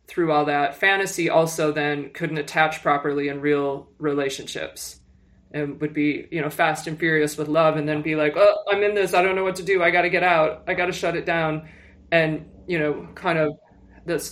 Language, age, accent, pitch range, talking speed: English, 20-39, American, 150-175 Hz, 220 wpm